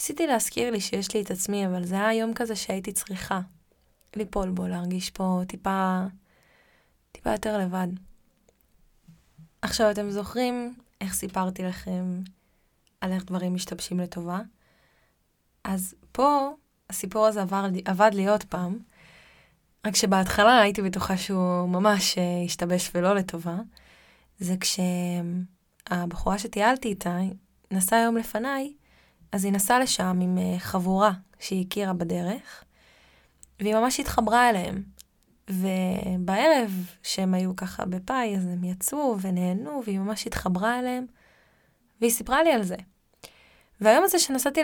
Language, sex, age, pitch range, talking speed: Hebrew, female, 20-39, 185-220 Hz, 125 wpm